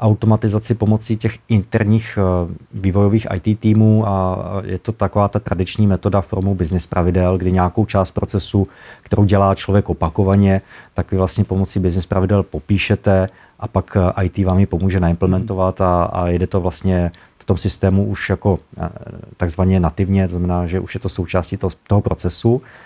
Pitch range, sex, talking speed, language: 95-110 Hz, male, 160 wpm, Czech